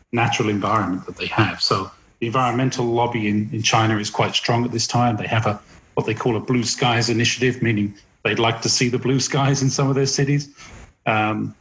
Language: English